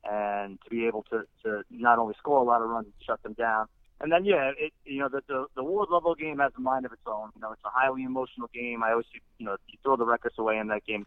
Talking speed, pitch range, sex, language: 305 wpm, 105-120 Hz, male, English